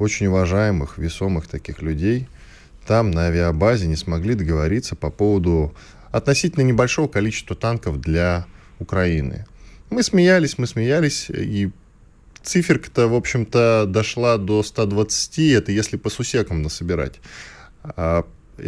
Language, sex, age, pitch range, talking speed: Russian, male, 10-29, 85-120 Hz, 110 wpm